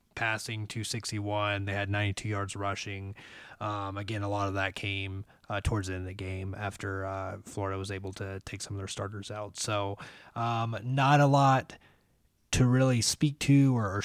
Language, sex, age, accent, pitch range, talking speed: English, male, 20-39, American, 100-115 Hz, 185 wpm